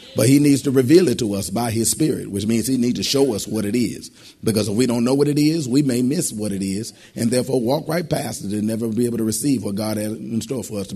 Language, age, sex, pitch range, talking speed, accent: English, 40-59, male, 95-120 Hz, 300 wpm, American